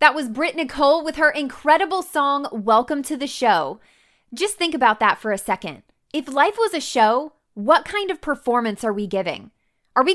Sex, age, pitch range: female, 20-39, 220-300 Hz